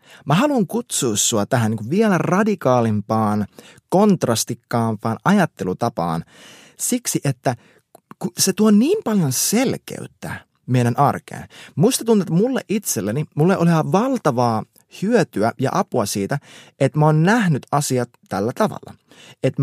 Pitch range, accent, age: 120-185 Hz, native, 30-49